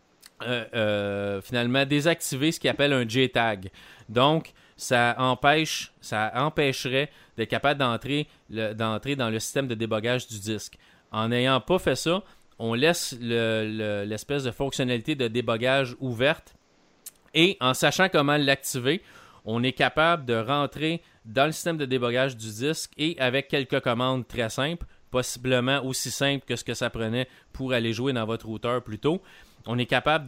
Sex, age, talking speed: male, 30-49, 155 wpm